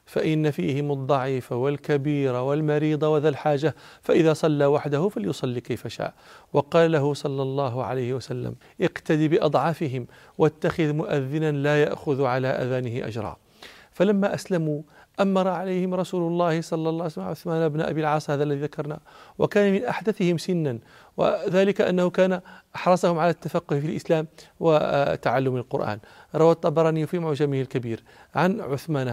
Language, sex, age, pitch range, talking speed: Arabic, male, 40-59, 145-185 Hz, 135 wpm